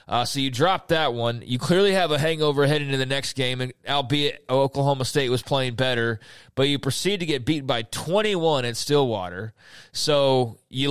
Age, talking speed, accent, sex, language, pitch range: 30-49, 195 wpm, American, male, English, 130-165 Hz